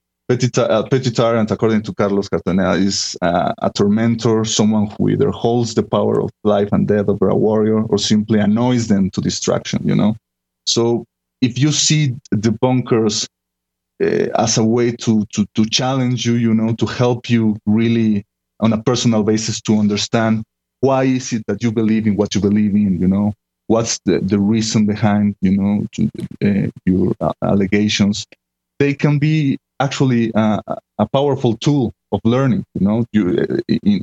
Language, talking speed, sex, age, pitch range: English, 170 wpm, male, 30-49, 100-120 Hz